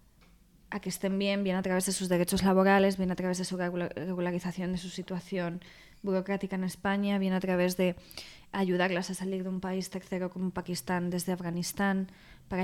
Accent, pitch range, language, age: Spanish, 185-210 Hz, Spanish, 20-39